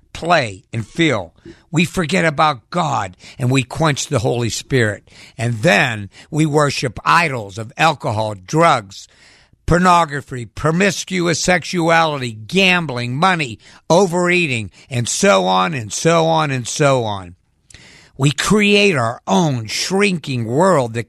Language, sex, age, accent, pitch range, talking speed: English, male, 60-79, American, 110-165 Hz, 120 wpm